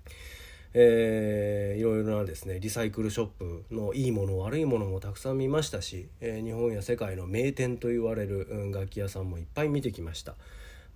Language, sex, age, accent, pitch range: Japanese, male, 40-59, native, 95-120 Hz